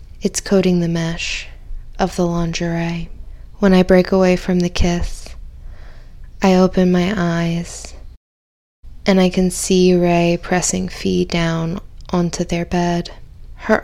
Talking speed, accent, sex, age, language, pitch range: 130 wpm, American, female, 20-39, English, 150-180 Hz